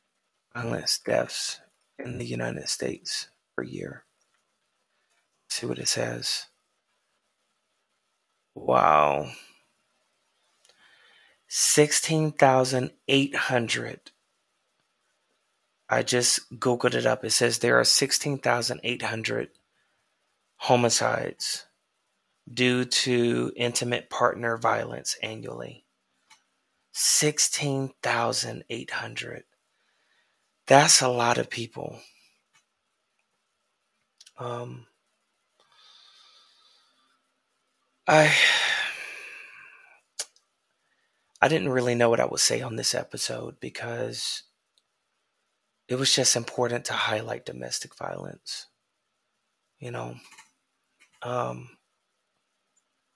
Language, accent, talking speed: English, American, 70 wpm